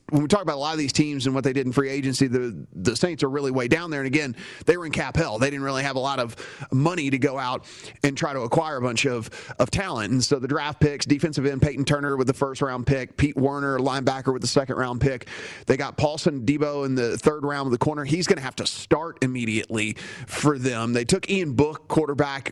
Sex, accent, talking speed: male, American, 255 wpm